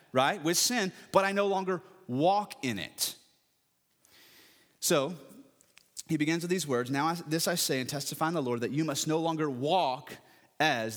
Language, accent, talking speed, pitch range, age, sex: English, American, 175 wpm, 115-155 Hz, 30-49, male